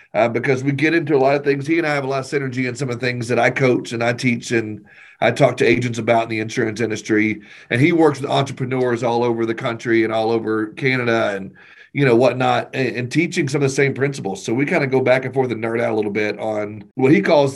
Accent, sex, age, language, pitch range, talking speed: American, male, 40-59, English, 115-140 Hz, 275 wpm